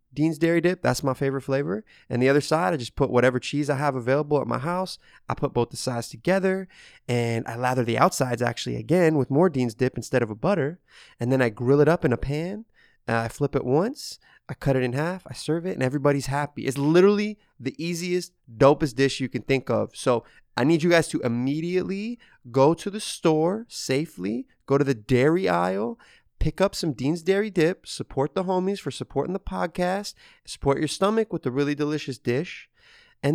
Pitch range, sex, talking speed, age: 130-175 Hz, male, 210 wpm, 20-39